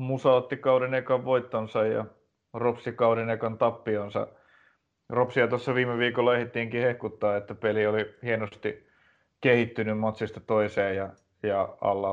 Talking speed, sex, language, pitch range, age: 130 wpm, male, Finnish, 110-125 Hz, 30-49